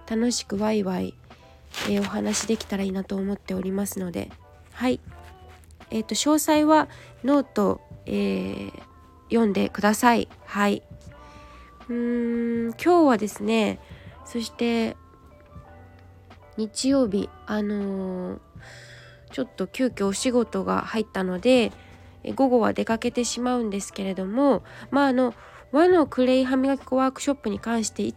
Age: 20-39